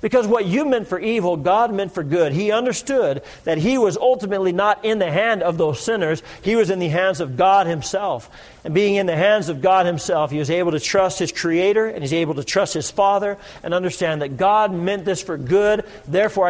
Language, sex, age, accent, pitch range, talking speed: English, male, 50-69, American, 150-195 Hz, 225 wpm